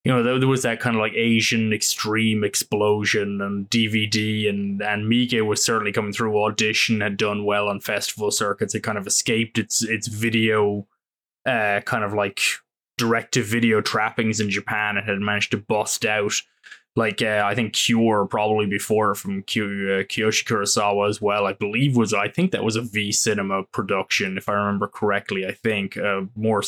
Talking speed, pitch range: 180 wpm, 105-115 Hz